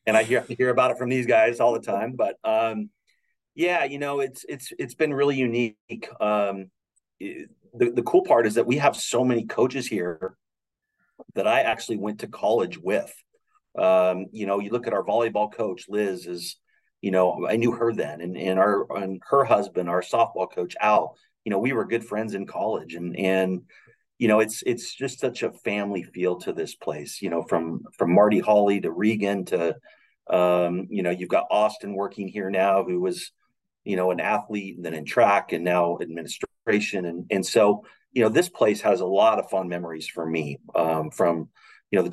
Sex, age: male, 40-59